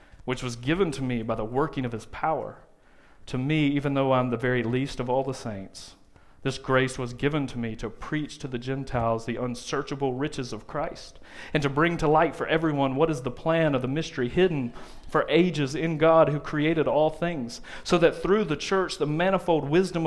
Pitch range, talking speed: 130-170 Hz, 210 wpm